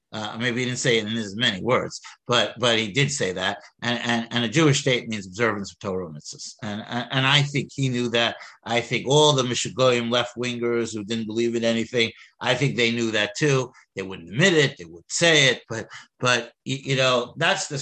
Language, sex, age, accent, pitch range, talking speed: English, male, 60-79, American, 120-155 Hz, 225 wpm